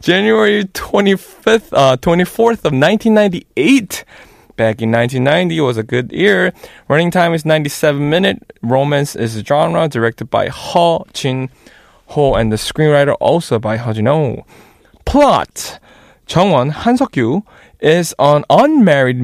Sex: male